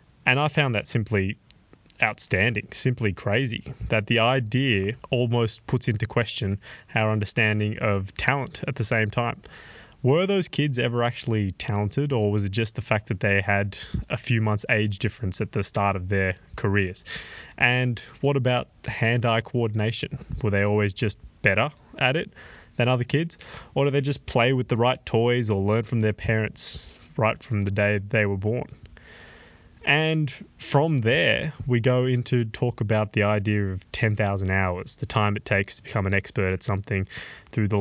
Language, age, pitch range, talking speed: English, 20-39, 100-120 Hz, 175 wpm